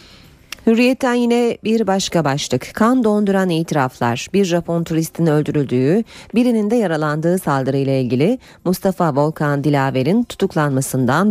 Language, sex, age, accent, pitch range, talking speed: Turkish, female, 30-49, native, 145-215 Hz, 110 wpm